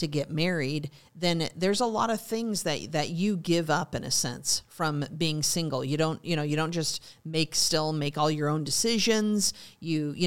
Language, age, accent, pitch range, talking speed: English, 40-59, American, 145-170 Hz, 210 wpm